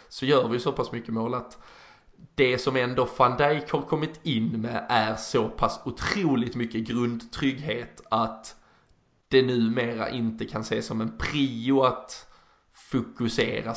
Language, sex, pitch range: Swedish, male, 115-140 Hz